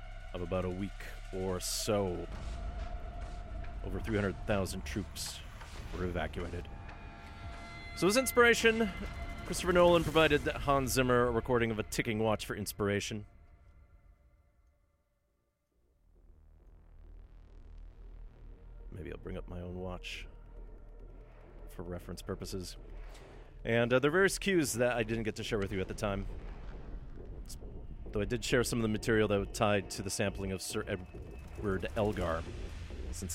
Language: English